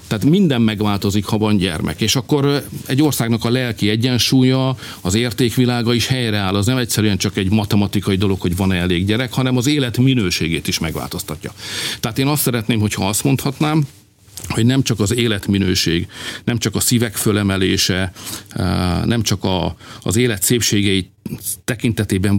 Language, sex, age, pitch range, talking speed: Hungarian, male, 50-69, 100-125 Hz, 155 wpm